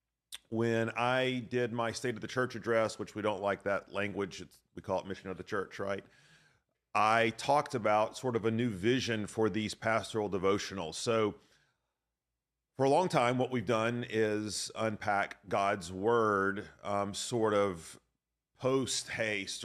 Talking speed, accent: 155 wpm, American